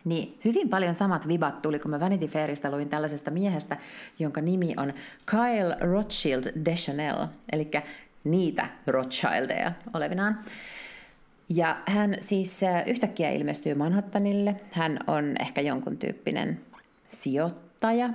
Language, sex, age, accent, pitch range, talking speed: Finnish, female, 30-49, native, 150-190 Hz, 115 wpm